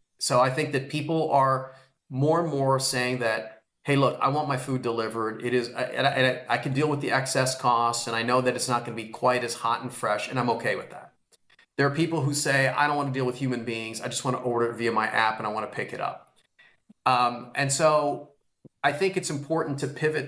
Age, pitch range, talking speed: 30-49, 120-145 Hz, 250 wpm